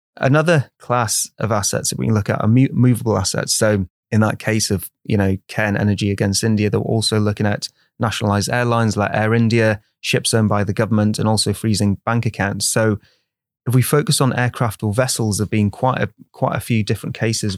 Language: English